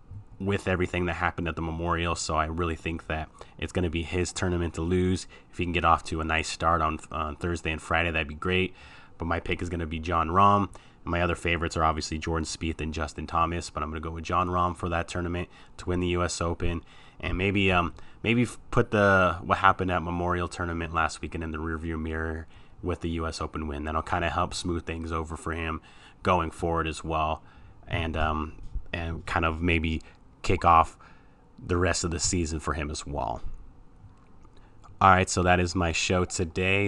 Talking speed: 220 wpm